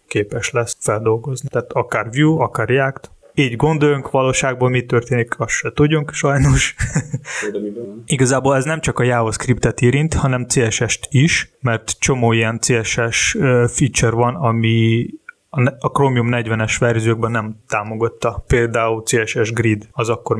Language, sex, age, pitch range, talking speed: Hungarian, male, 20-39, 115-140 Hz, 130 wpm